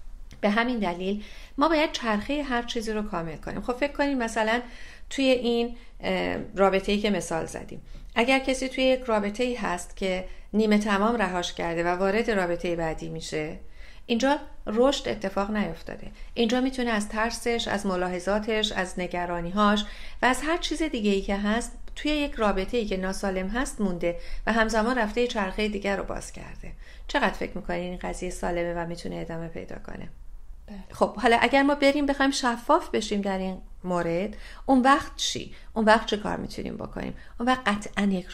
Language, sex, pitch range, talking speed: Persian, female, 190-245 Hz, 160 wpm